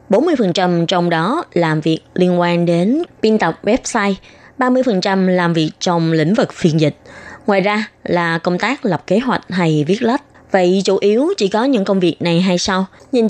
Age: 20-39